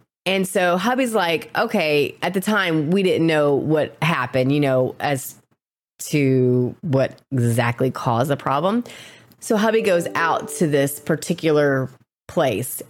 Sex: female